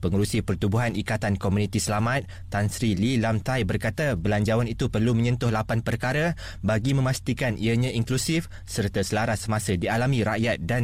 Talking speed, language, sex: 150 wpm, Malay, male